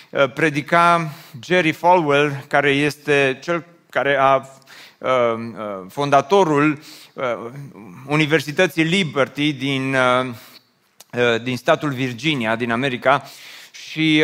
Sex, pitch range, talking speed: male, 125-165 Hz, 95 wpm